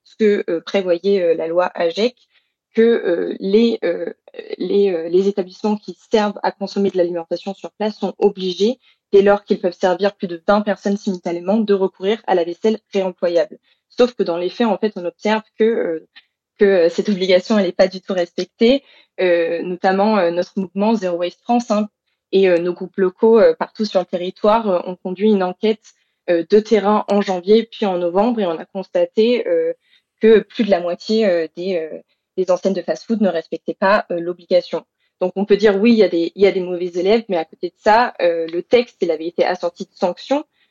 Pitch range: 180-220 Hz